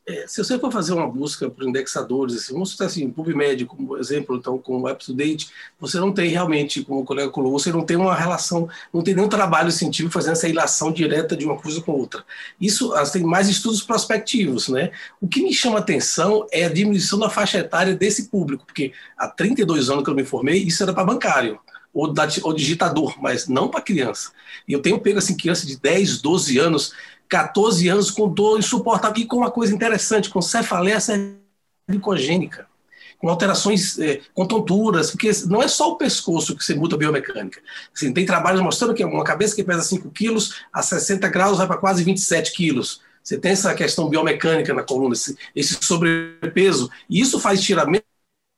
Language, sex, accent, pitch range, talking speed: Portuguese, male, Brazilian, 155-205 Hz, 195 wpm